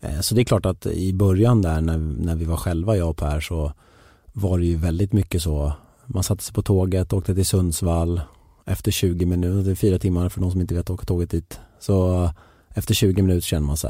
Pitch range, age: 80-100 Hz, 30-49